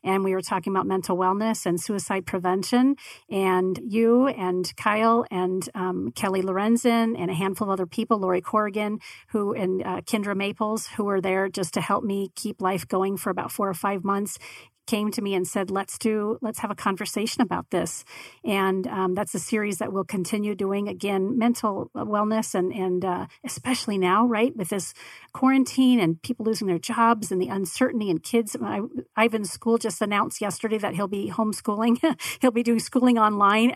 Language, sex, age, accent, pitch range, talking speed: English, female, 40-59, American, 195-230 Hz, 185 wpm